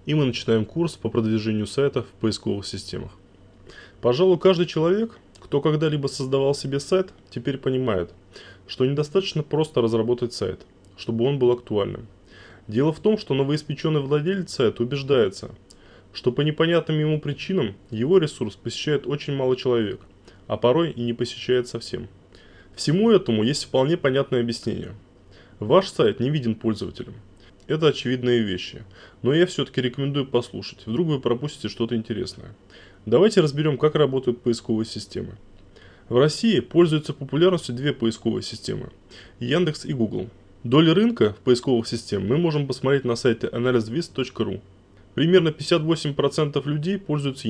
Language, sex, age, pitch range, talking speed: Russian, male, 20-39, 110-150 Hz, 140 wpm